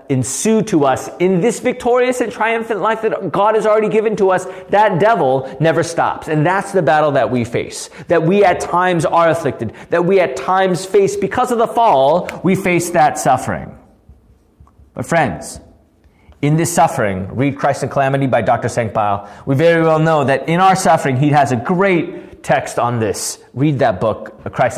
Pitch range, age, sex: 130-215 Hz, 30-49, male